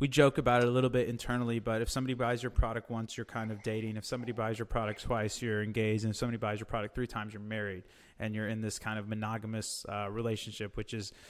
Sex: male